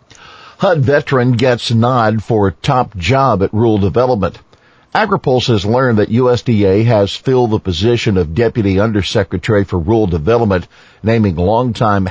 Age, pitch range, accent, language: 50-69, 95-115 Hz, American, English